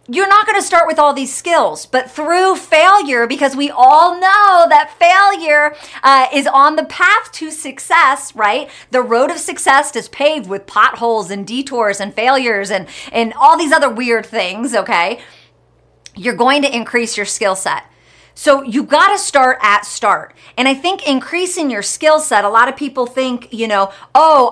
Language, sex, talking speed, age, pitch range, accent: English, female, 185 wpm, 40-59, 230-295 Hz, American